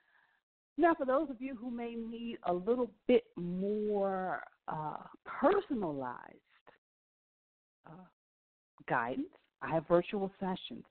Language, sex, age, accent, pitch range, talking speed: English, female, 50-69, American, 155-200 Hz, 110 wpm